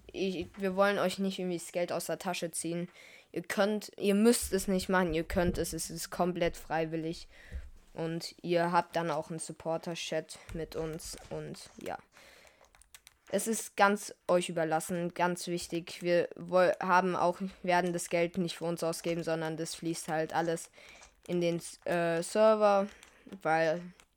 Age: 20-39